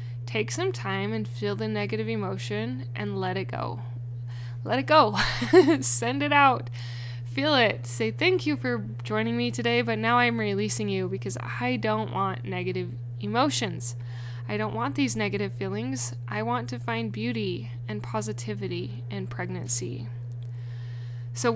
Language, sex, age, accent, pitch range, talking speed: English, female, 10-29, American, 110-120 Hz, 150 wpm